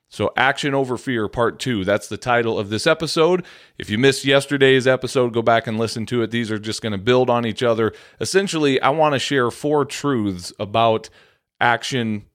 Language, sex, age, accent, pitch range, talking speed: English, male, 40-59, American, 110-135 Hz, 200 wpm